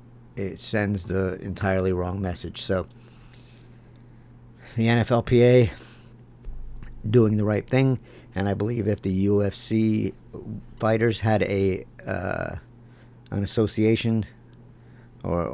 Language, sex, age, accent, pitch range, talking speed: English, male, 50-69, American, 90-120 Hz, 100 wpm